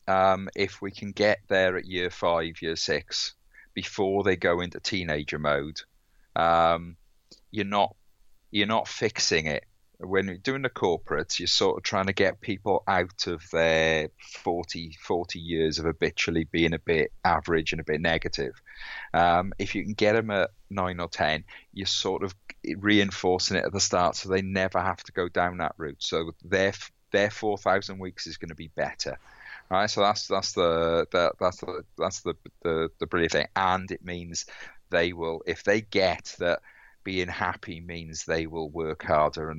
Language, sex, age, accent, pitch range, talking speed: English, male, 40-59, British, 80-95 Hz, 185 wpm